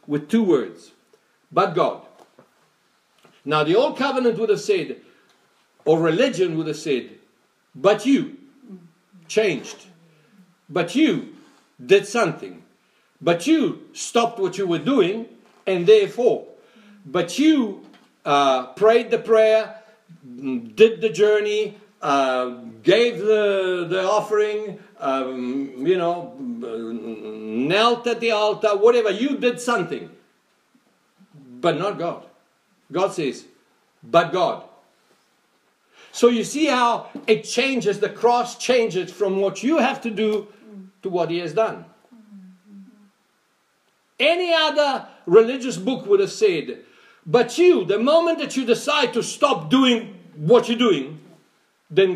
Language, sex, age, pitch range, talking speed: English, male, 60-79, 180-245 Hz, 120 wpm